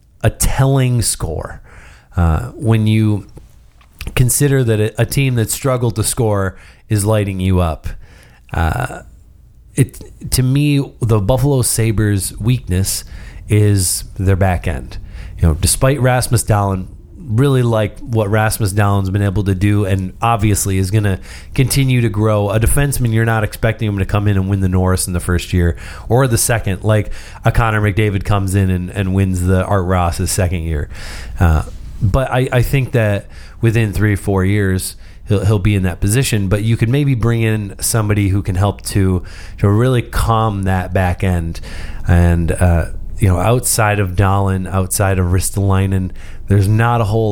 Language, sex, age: English, male, 30-49